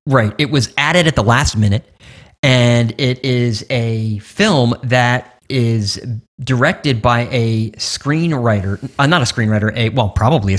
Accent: American